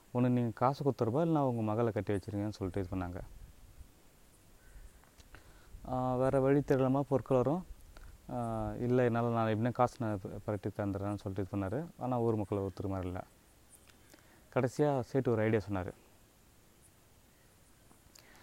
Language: Tamil